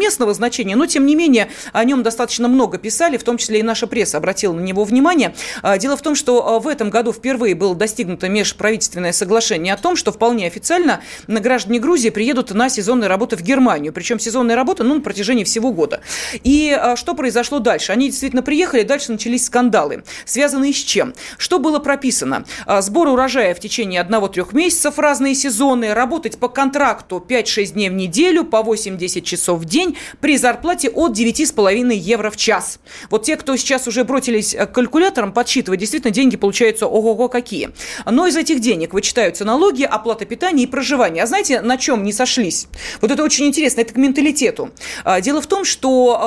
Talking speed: 180 wpm